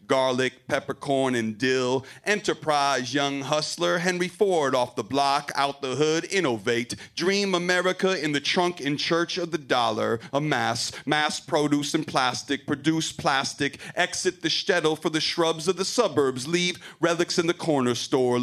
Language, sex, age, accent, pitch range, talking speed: English, male, 40-59, American, 150-180 Hz, 155 wpm